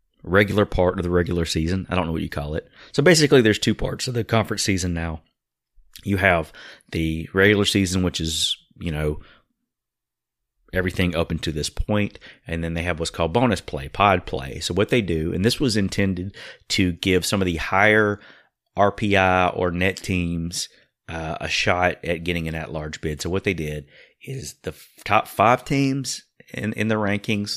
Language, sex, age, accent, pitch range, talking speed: English, male, 30-49, American, 85-100 Hz, 190 wpm